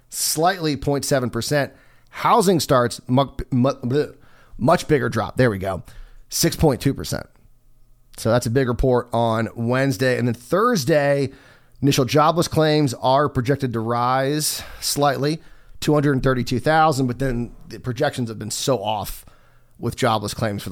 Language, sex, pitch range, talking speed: English, male, 115-145 Hz, 125 wpm